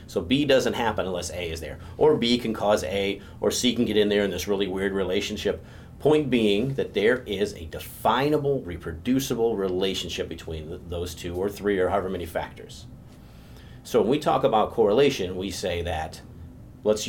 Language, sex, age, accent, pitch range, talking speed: English, male, 40-59, American, 90-120 Hz, 185 wpm